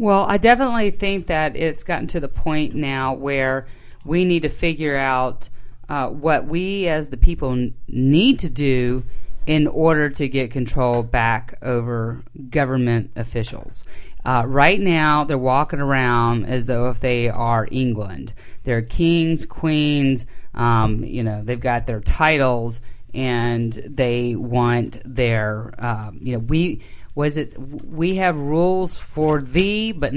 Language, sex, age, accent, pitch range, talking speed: English, female, 30-49, American, 125-165 Hz, 145 wpm